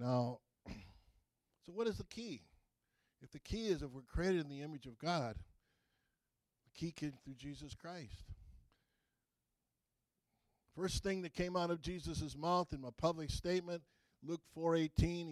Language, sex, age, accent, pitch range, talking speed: English, male, 60-79, American, 130-180 Hz, 150 wpm